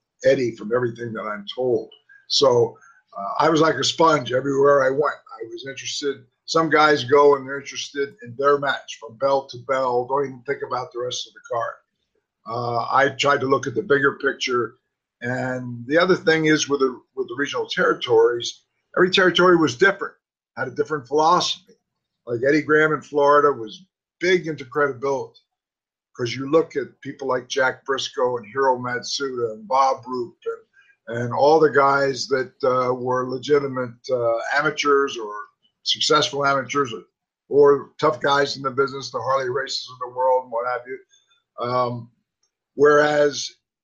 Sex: male